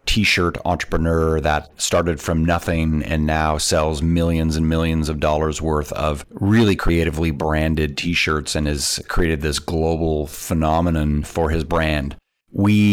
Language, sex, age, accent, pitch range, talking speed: English, male, 30-49, American, 80-90 Hz, 140 wpm